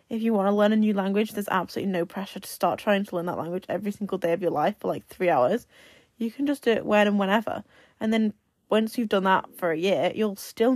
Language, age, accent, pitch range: English, 10-29, British, 190-220 Hz